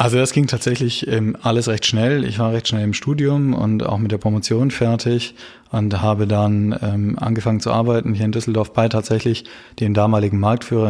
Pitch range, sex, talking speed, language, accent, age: 105-120 Hz, male, 180 wpm, German, German, 20-39